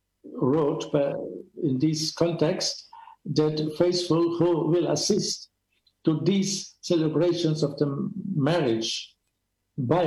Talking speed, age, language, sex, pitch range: 95 wpm, 60-79, English, male, 140-175 Hz